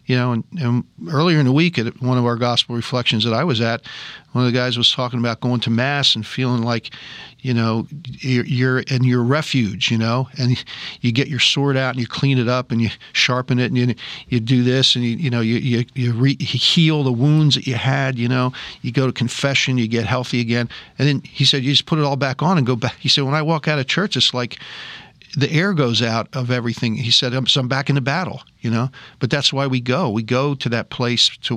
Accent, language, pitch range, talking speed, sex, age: American, English, 115-140 Hz, 255 wpm, male, 50-69